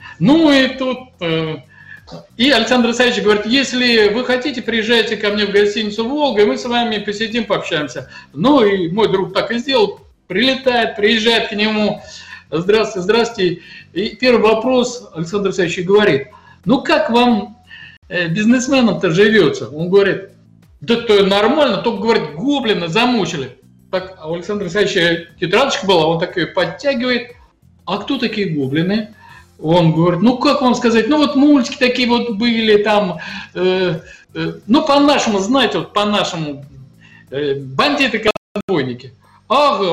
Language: Russian